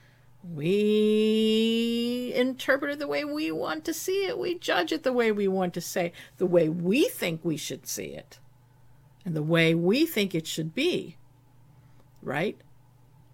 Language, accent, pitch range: English, American, 125-205 Hz